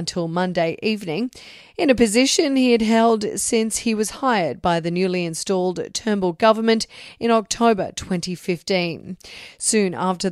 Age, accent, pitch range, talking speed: 40-59, Australian, 180-225 Hz, 140 wpm